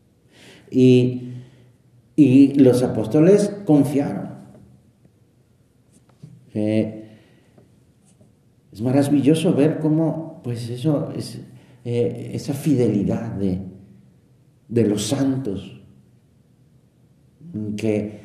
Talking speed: 65 wpm